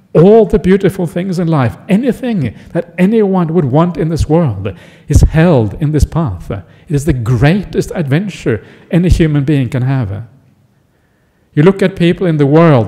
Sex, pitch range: male, 130-170 Hz